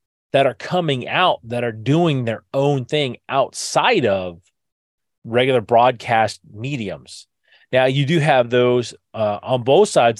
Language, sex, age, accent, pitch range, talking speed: English, male, 30-49, American, 105-145 Hz, 140 wpm